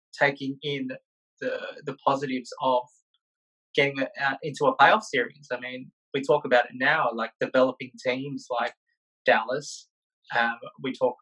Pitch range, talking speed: 125-175 Hz, 145 wpm